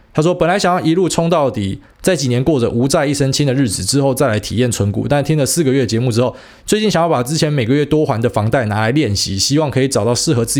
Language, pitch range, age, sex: Chinese, 110-145 Hz, 20-39, male